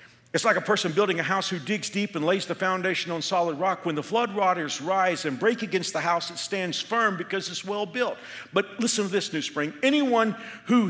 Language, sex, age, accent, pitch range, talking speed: English, male, 50-69, American, 175-225 Hz, 230 wpm